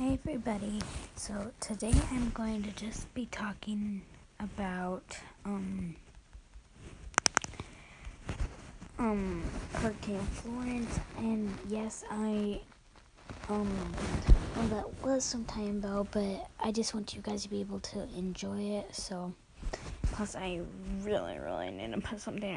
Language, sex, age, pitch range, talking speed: English, female, 20-39, 200-220 Hz, 120 wpm